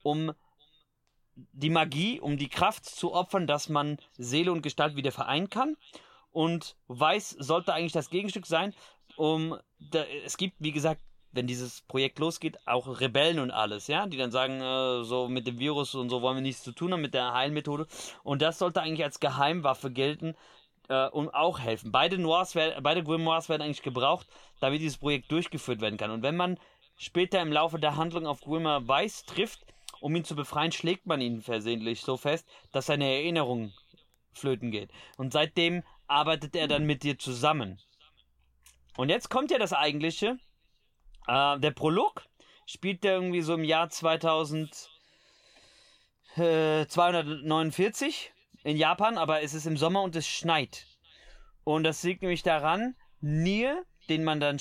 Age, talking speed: 30-49, 170 wpm